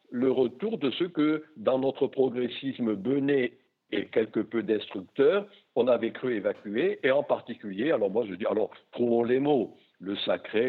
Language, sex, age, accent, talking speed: French, male, 60-79, French, 170 wpm